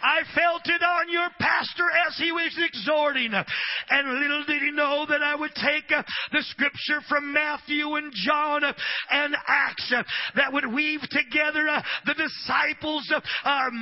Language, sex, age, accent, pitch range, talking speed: English, male, 40-59, American, 255-295 Hz, 145 wpm